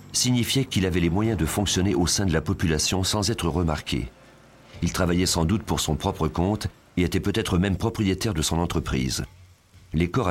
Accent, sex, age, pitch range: French, male, 40-59, 80-105 Hz